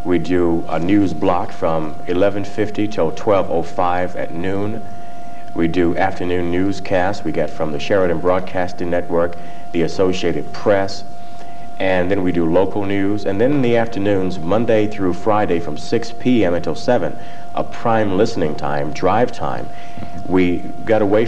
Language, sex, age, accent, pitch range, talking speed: English, male, 50-69, American, 85-105 Hz, 150 wpm